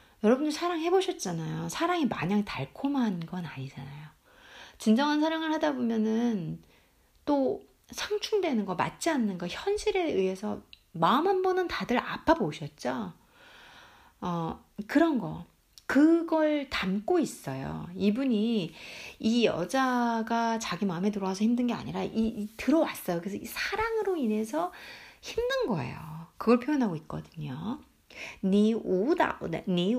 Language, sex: Korean, female